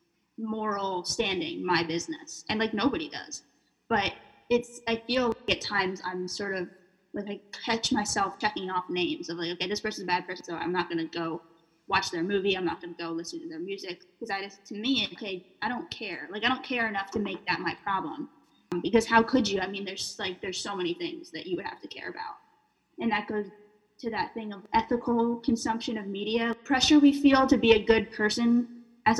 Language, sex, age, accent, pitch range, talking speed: English, female, 10-29, American, 190-240 Hz, 220 wpm